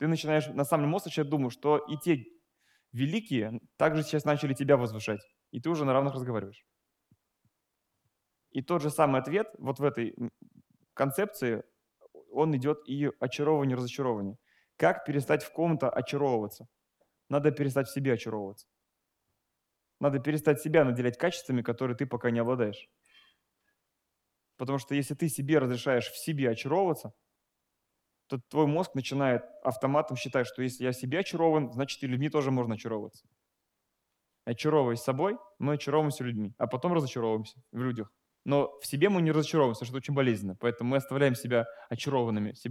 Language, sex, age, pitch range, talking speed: Russian, male, 20-39, 125-150 Hz, 150 wpm